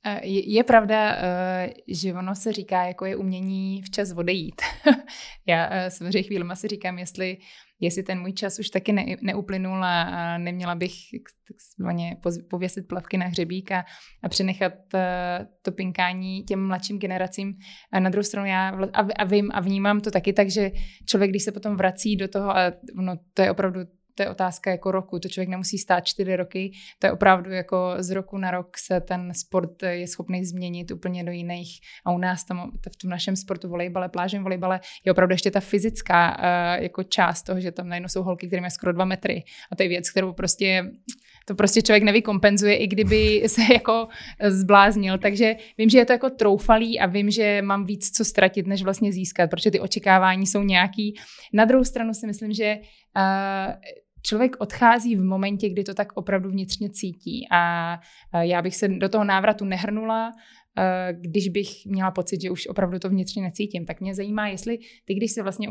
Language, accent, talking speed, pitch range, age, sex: Czech, native, 185 wpm, 185-210 Hz, 20-39, female